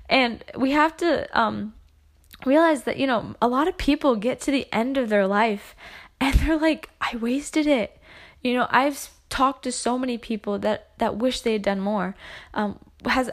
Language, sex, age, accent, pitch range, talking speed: English, female, 10-29, American, 190-230 Hz, 195 wpm